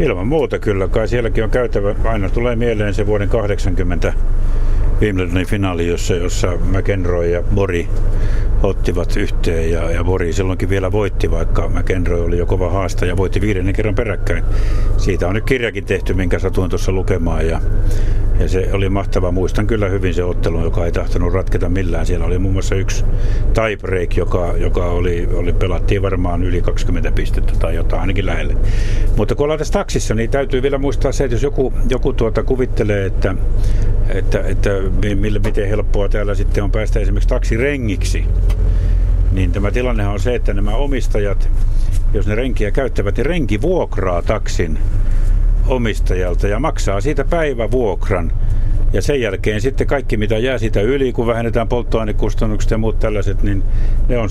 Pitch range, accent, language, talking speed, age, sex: 95-110 Hz, native, Finnish, 165 wpm, 60-79, male